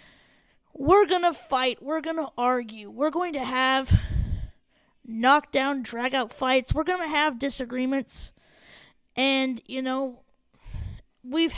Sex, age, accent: female, 20-39, American